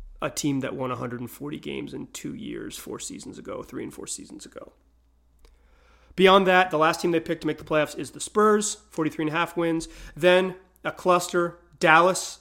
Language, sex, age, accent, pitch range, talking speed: English, male, 30-49, American, 145-180 Hz, 180 wpm